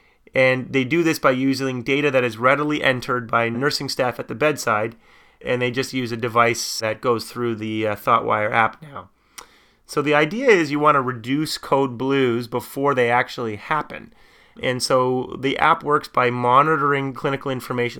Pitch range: 120-145 Hz